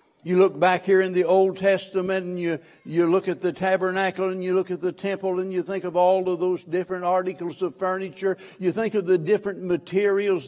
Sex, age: male, 60-79